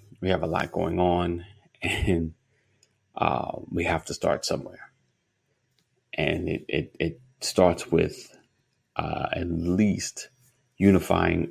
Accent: American